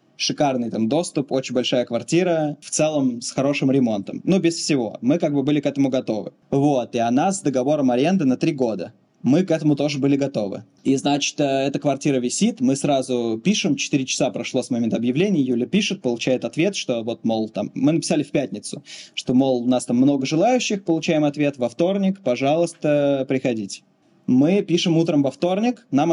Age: 20-39